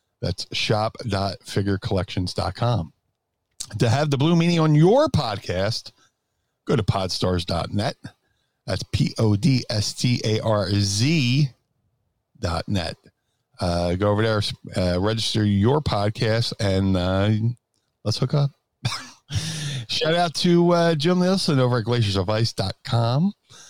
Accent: American